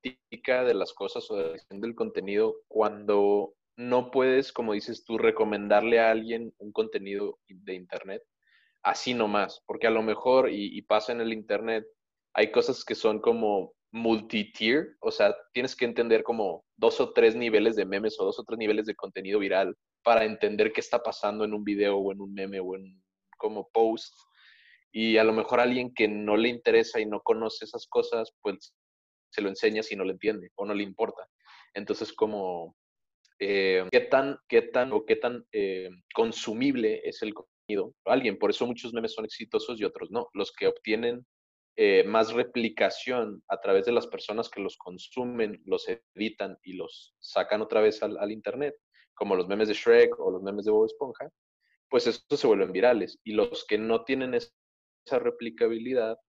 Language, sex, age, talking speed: Spanish, male, 20-39, 185 wpm